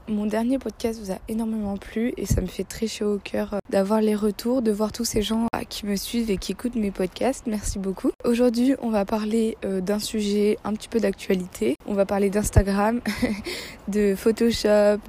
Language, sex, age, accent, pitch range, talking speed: French, female, 20-39, French, 195-230 Hz, 195 wpm